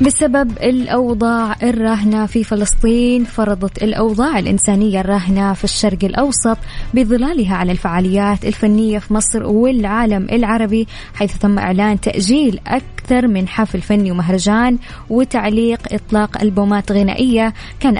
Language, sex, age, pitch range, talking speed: English, female, 10-29, 200-230 Hz, 115 wpm